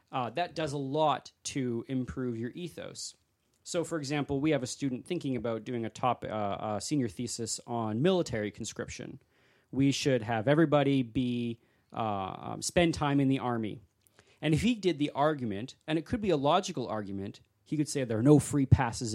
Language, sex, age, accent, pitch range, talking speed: English, male, 30-49, American, 110-140 Hz, 190 wpm